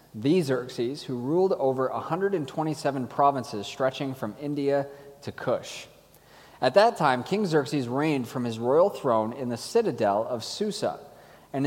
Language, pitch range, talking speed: English, 125-155 Hz, 145 wpm